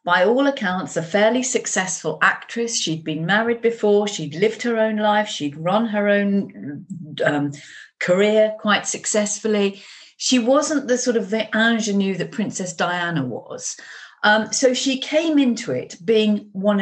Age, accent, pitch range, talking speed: 40-59, British, 180-225 Hz, 155 wpm